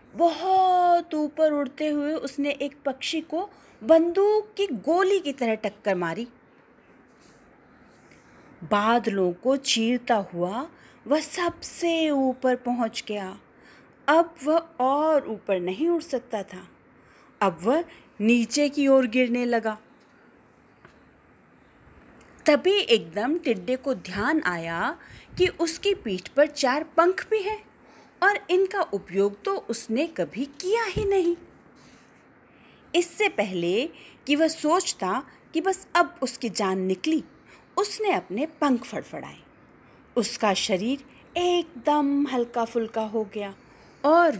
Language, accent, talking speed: Hindi, native, 115 wpm